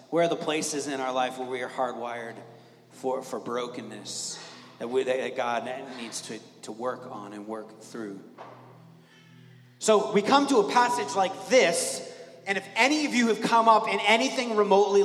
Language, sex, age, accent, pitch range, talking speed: English, male, 30-49, American, 135-195 Hz, 180 wpm